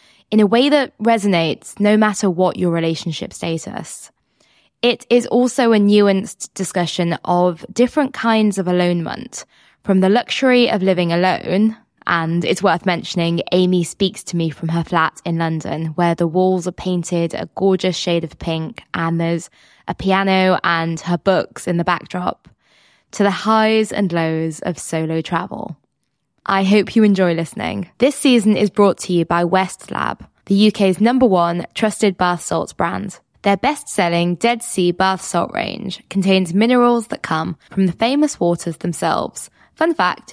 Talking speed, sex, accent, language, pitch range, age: 160 wpm, female, British, English, 170-220 Hz, 20-39